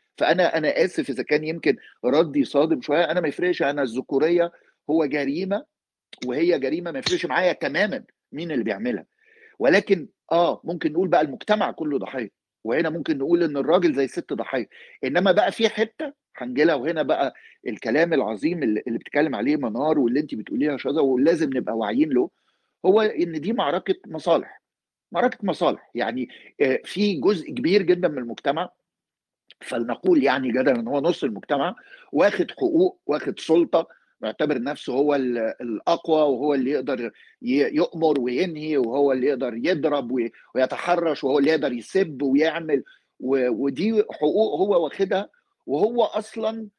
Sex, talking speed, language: male, 145 wpm, Arabic